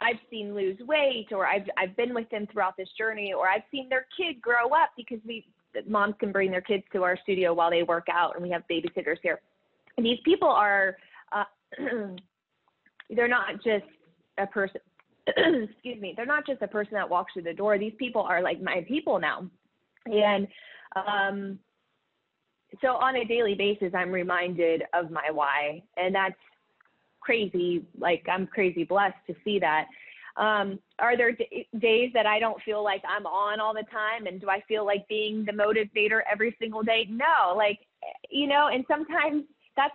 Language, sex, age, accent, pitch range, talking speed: English, female, 20-39, American, 190-245 Hz, 180 wpm